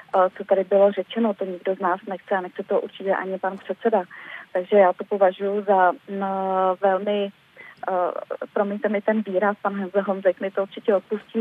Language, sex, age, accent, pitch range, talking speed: Czech, female, 30-49, native, 195-215 Hz, 185 wpm